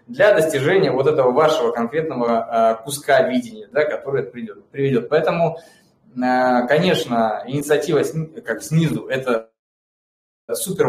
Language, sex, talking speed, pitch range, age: Russian, male, 110 wpm, 125-165 Hz, 20-39